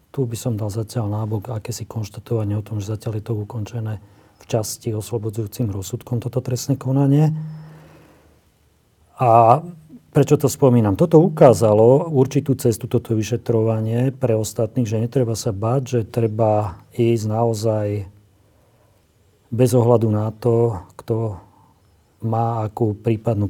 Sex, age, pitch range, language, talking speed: male, 40-59, 110-125 Hz, Slovak, 130 wpm